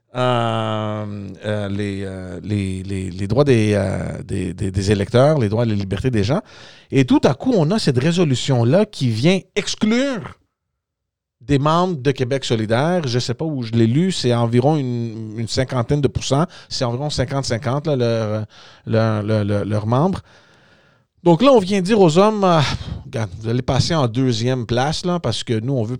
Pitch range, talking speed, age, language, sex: 110-150 Hz, 180 wpm, 40-59, French, male